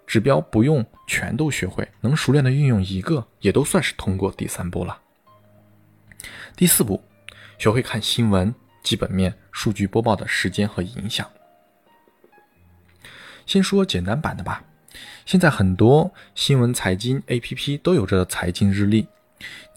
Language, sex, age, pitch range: Chinese, male, 20-39, 100-130 Hz